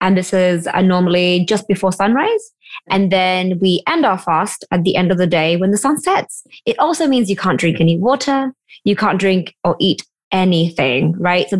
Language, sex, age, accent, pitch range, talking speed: English, female, 20-39, British, 180-225 Hz, 200 wpm